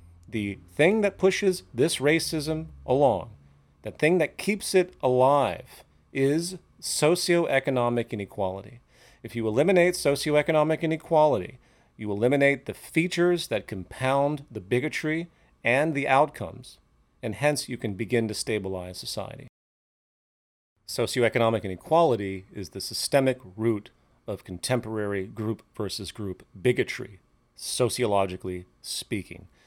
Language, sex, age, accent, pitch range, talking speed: English, male, 40-59, American, 95-130 Hz, 110 wpm